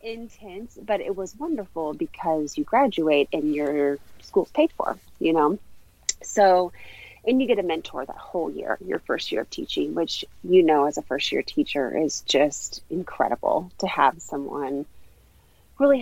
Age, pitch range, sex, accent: 30-49, 150-195 Hz, female, American